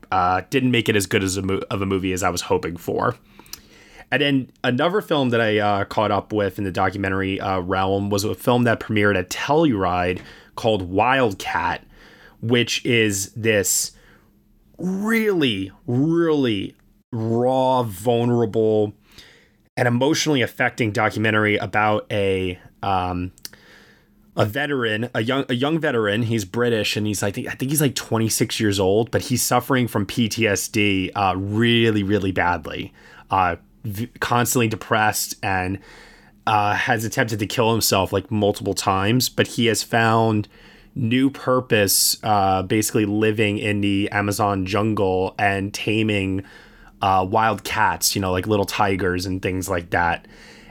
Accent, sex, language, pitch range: American, male, English, 100-120 Hz